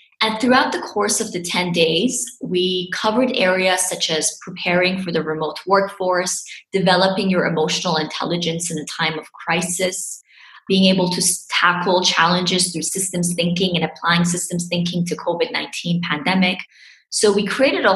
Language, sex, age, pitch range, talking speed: English, female, 20-39, 170-200 Hz, 155 wpm